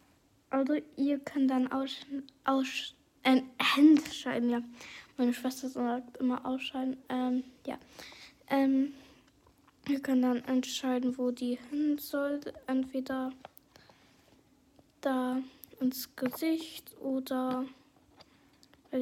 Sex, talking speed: female, 100 wpm